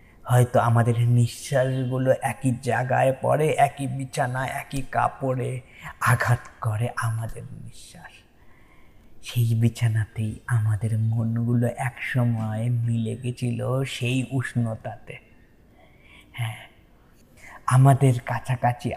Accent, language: native, Bengali